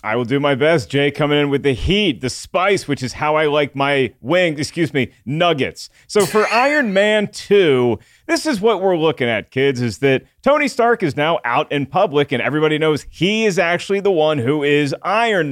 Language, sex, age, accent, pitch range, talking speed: English, male, 40-59, American, 140-210 Hz, 215 wpm